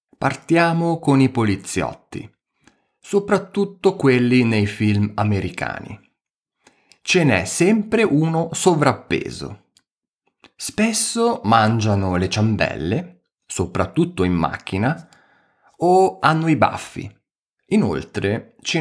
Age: 30-49